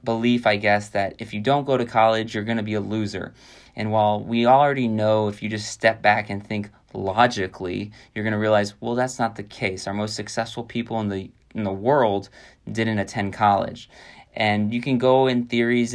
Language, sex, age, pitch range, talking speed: English, male, 20-39, 105-125 Hz, 210 wpm